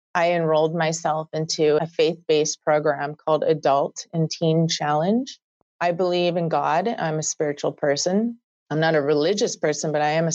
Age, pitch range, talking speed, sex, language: 30-49, 150-175 Hz, 170 wpm, female, English